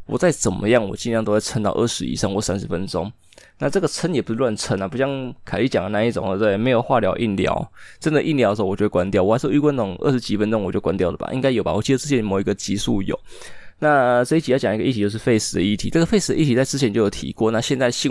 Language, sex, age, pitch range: Chinese, male, 20-39, 100-135 Hz